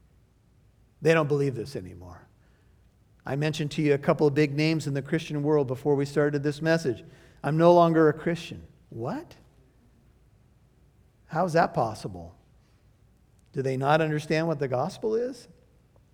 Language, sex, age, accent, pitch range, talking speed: English, male, 50-69, American, 140-185 Hz, 155 wpm